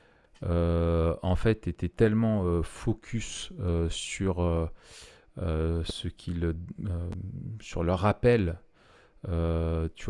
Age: 40-59